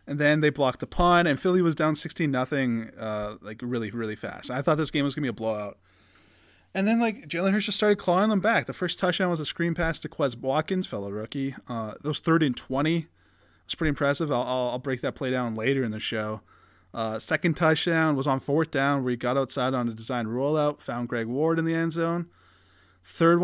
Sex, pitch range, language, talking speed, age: male, 115-155 Hz, English, 235 wpm, 20-39